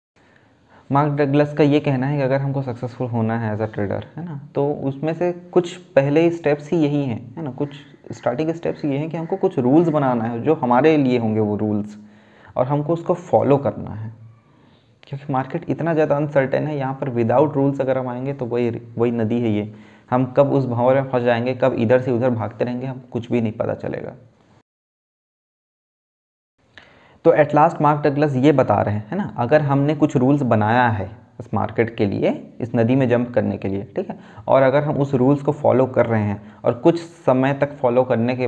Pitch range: 115-145 Hz